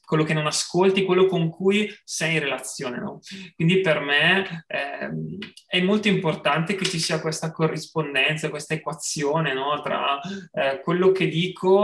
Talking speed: 155 wpm